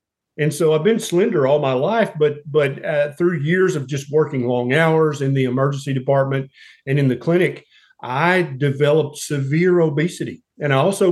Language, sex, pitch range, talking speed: Hindi, male, 140-175 Hz, 180 wpm